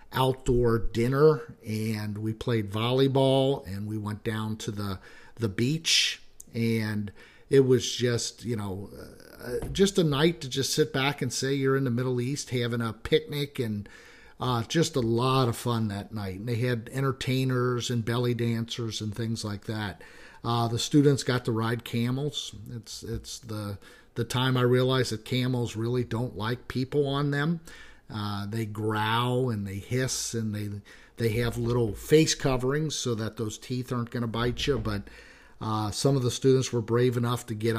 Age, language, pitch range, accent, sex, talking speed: 50-69, English, 115-130 Hz, American, male, 180 wpm